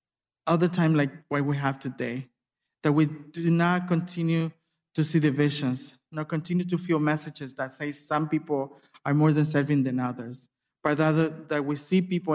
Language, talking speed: English, 175 wpm